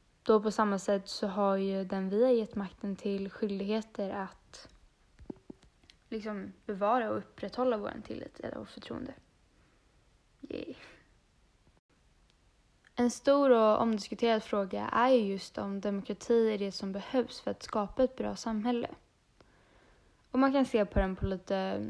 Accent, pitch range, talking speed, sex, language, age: native, 205-245 Hz, 140 wpm, female, Swedish, 10-29